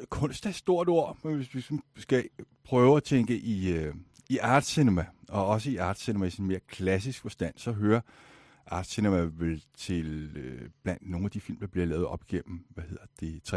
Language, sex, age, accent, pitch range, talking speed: Danish, male, 60-79, native, 85-115 Hz, 175 wpm